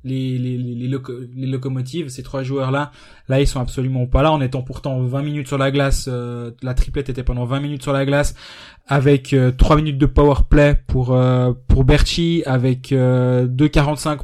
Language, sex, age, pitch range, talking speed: French, male, 20-39, 130-160 Hz, 200 wpm